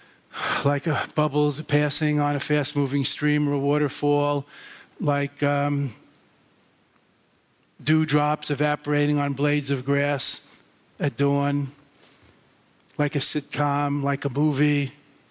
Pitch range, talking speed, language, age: 130-145 Hz, 110 wpm, English, 50-69